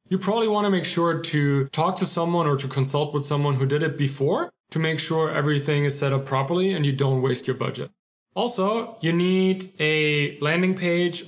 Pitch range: 135-170 Hz